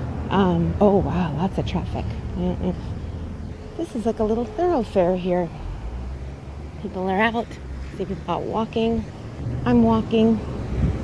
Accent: American